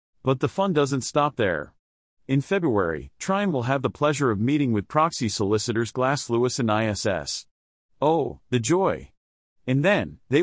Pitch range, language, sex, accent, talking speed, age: 115-150 Hz, English, male, American, 160 wpm, 40-59